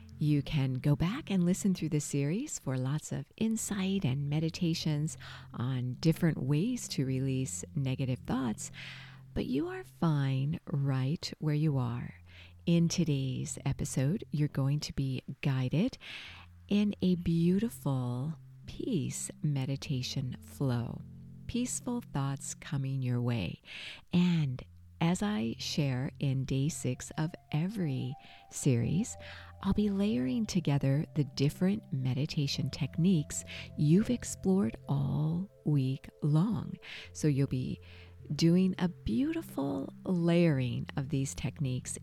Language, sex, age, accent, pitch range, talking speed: English, female, 50-69, American, 130-170 Hz, 115 wpm